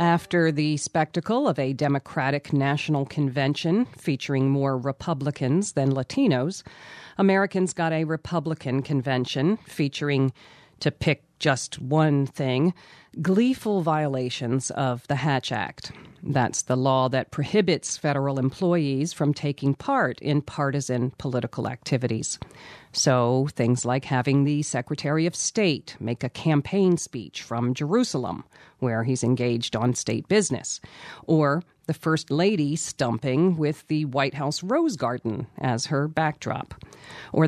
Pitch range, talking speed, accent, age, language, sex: 130-160 Hz, 125 wpm, American, 40-59, English, female